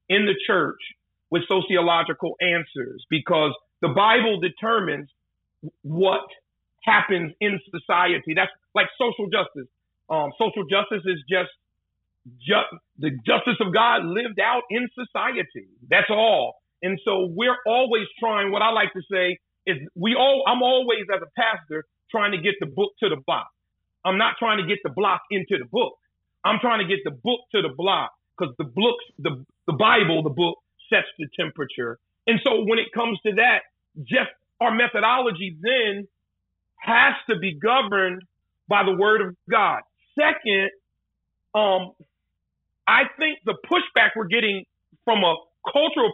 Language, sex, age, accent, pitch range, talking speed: English, male, 40-59, American, 170-230 Hz, 155 wpm